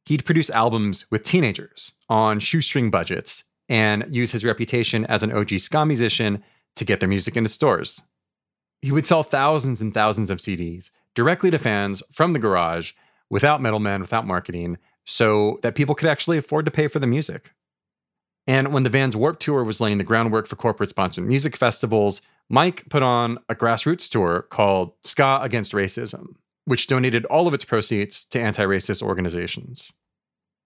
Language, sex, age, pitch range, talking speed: English, male, 30-49, 105-145 Hz, 170 wpm